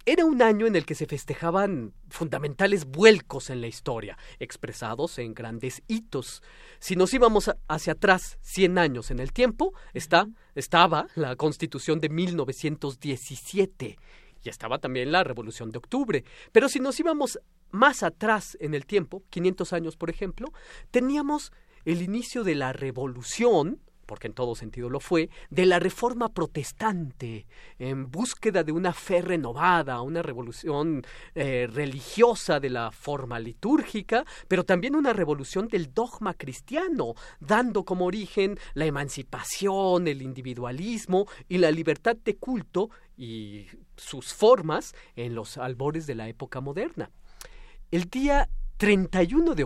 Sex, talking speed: male, 140 wpm